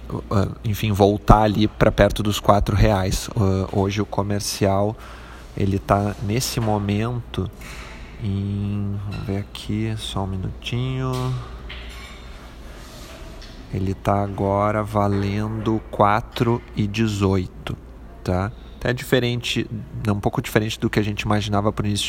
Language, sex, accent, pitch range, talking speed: Portuguese, male, Brazilian, 100-115 Hz, 105 wpm